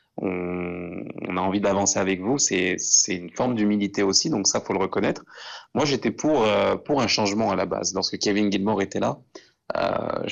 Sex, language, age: male, French, 20-39